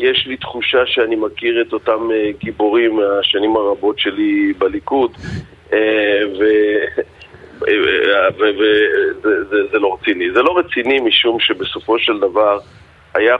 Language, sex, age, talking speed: Hebrew, male, 40-59, 110 wpm